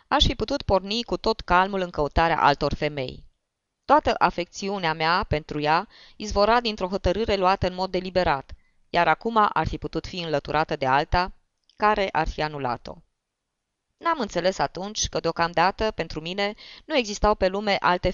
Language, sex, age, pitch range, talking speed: Romanian, female, 20-39, 160-200 Hz, 160 wpm